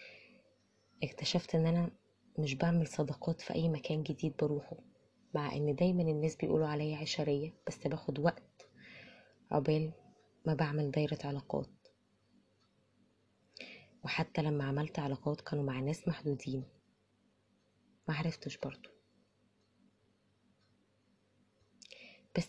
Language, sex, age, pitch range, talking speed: Arabic, female, 20-39, 145-170 Hz, 100 wpm